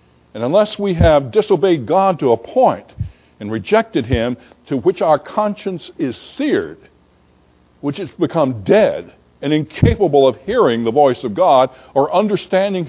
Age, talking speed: 60-79, 150 wpm